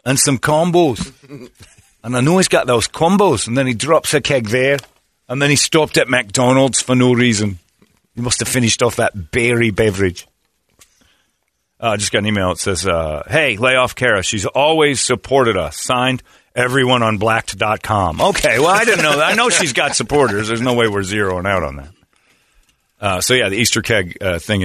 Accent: American